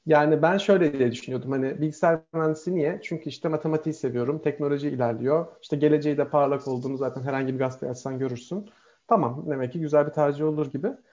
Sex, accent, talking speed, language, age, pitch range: male, native, 185 wpm, Turkish, 40-59, 140-175 Hz